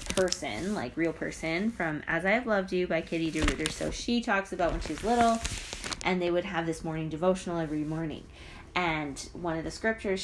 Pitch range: 160-225 Hz